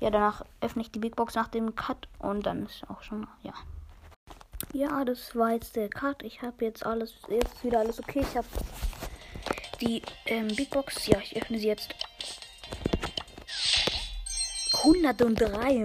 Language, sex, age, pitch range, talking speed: German, female, 20-39, 205-235 Hz, 165 wpm